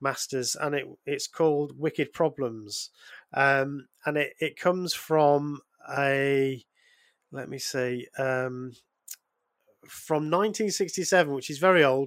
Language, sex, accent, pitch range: English, male, British, 135-160 Hz